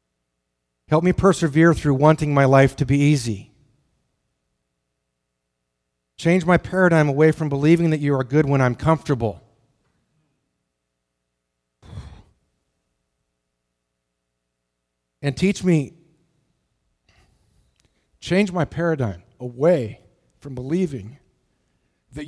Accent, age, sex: American, 50-69, male